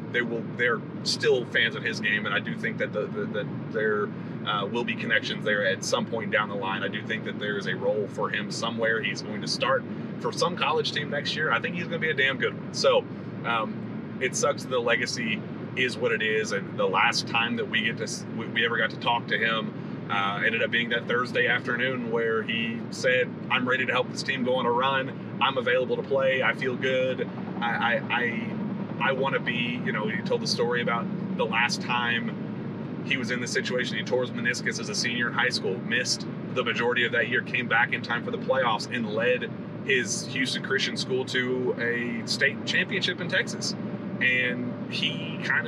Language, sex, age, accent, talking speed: English, male, 30-49, American, 225 wpm